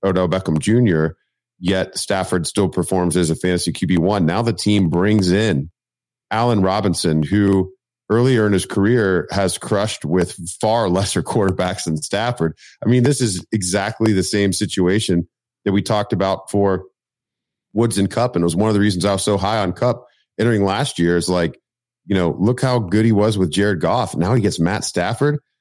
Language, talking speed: English, 190 wpm